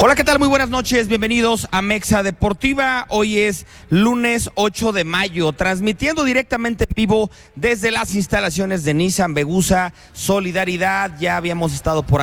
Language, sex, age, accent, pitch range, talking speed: English, male, 30-49, Mexican, 150-190 Hz, 150 wpm